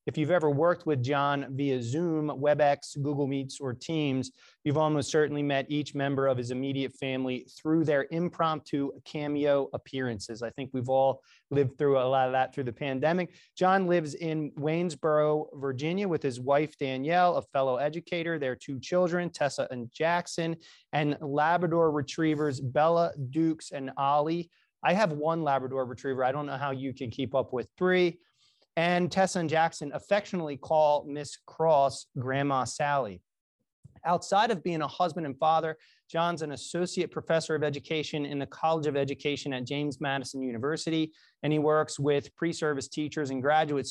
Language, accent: English, American